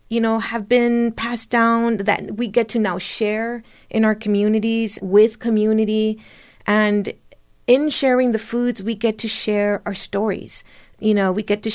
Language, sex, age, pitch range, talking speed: English, female, 30-49, 190-225 Hz, 170 wpm